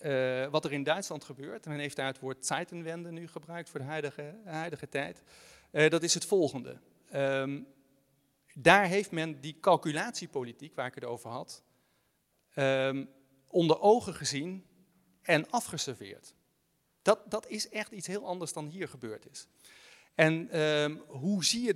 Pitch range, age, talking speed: 140-185 Hz, 40-59, 150 wpm